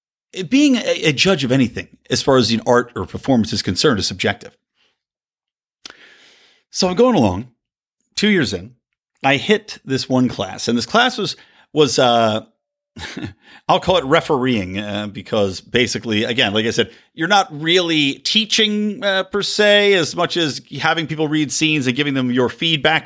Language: English